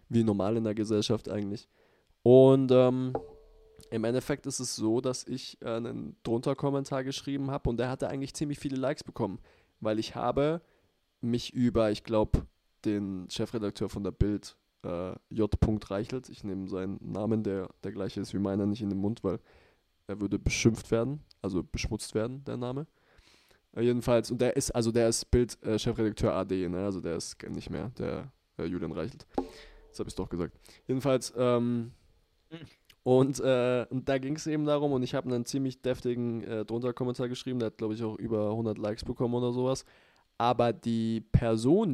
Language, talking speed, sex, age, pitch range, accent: German, 185 wpm, male, 20-39, 100-125 Hz, German